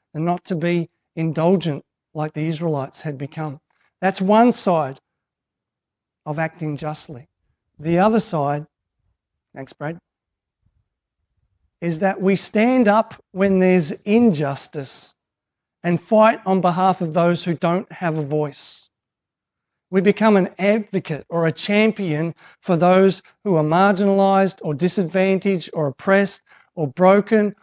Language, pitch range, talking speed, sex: English, 150-200 Hz, 125 wpm, male